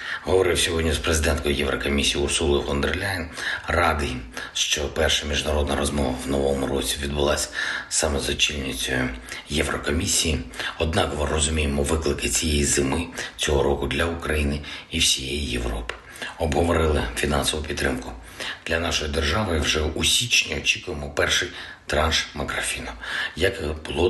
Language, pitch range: Ukrainian, 70-80 Hz